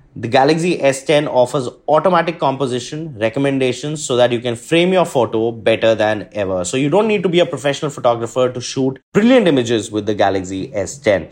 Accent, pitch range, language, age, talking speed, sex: native, 120-155 Hz, Hindi, 20-39, 180 wpm, male